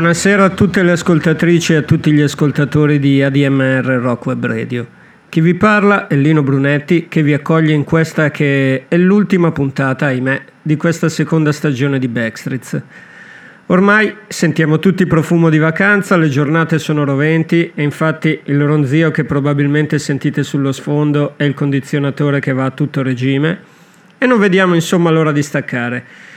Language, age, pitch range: Italian, 50-69, 140-170 Hz